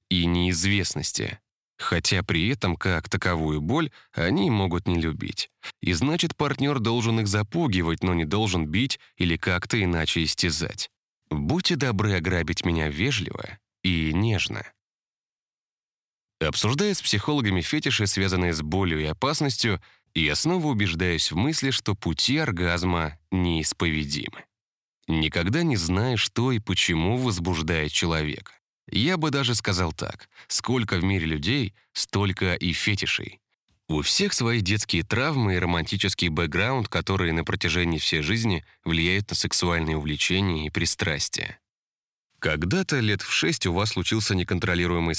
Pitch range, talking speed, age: 85-110 Hz, 130 wpm, 20-39